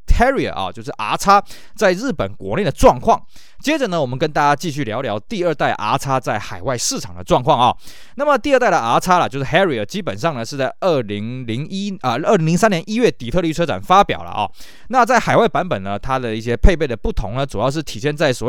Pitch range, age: 120-175 Hz, 20-39